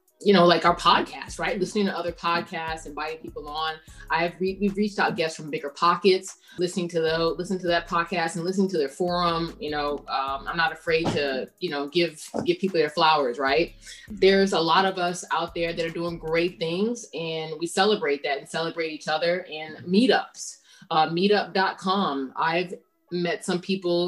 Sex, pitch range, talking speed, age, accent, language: female, 165-195 Hz, 195 wpm, 30-49, American, English